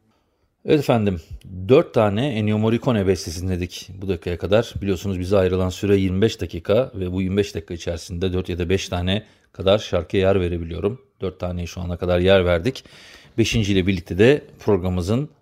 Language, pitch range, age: Turkish, 95-110 Hz, 40-59